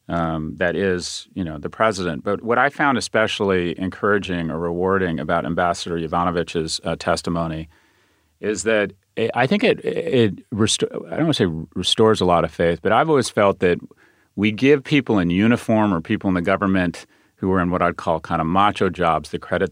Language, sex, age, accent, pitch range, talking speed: English, male, 40-59, American, 85-100 Hz, 200 wpm